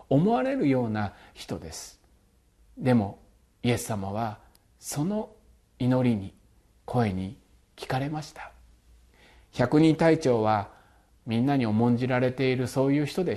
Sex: male